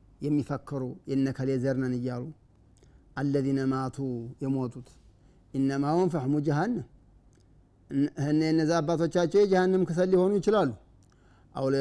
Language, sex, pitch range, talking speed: Amharic, male, 125-145 Hz, 95 wpm